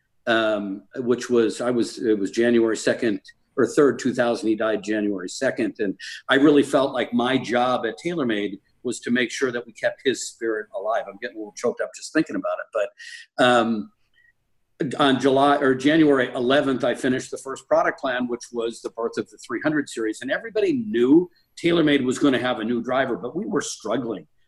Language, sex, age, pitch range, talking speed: English, male, 50-69, 115-145 Hz, 200 wpm